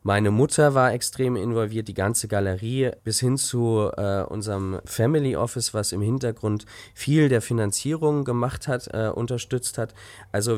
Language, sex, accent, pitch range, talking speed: German, male, German, 100-120 Hz, 155 wpm